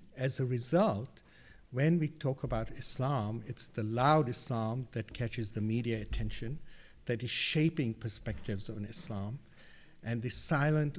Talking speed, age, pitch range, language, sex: 140 wpm, 50-69, 110-135 Hz, English, male